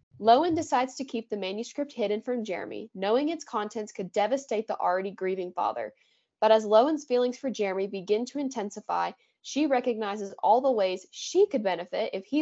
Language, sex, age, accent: English, female, 10-29, American